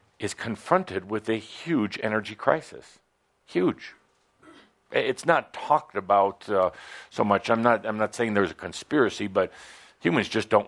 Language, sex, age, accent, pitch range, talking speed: English, male, 60-79, American, 95-115 Hz, 150 wpm